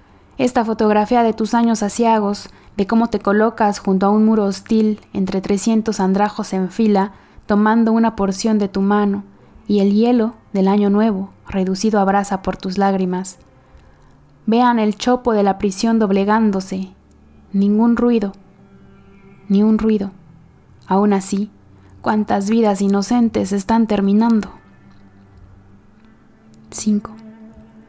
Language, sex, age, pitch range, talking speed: Spanish, female, 20-39, 195-225 Hz, 125 wpm